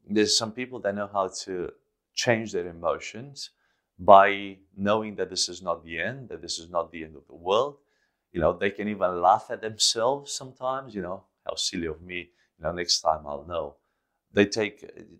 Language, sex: English, male